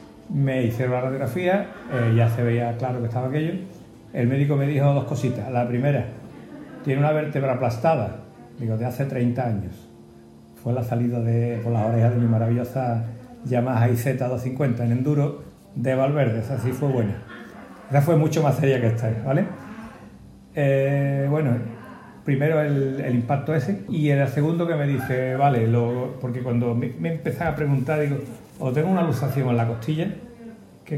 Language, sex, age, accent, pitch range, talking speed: Spanish, male, 60-79, Spanish, 120-145 Hz, 175 wpm